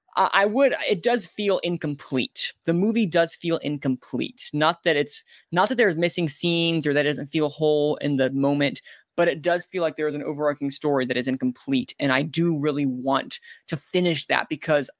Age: 20-39